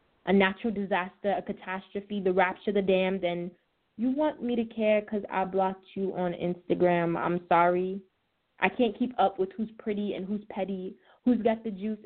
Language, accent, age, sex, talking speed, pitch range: English, American, 20-39, female, 190 wpm, 195-220 Hz